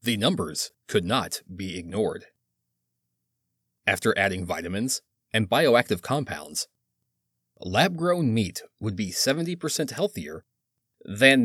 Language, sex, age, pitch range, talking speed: English, male, 30-49, 85-130 Hz, 100 wpm